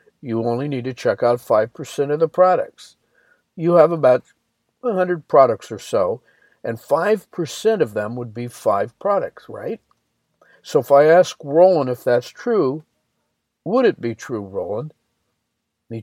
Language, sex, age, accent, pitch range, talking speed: English, male, 60-79, American, 120-175 Hz, 150 wpm